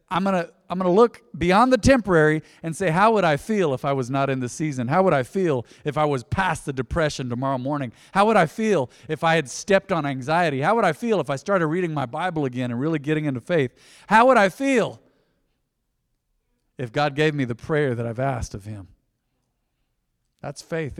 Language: English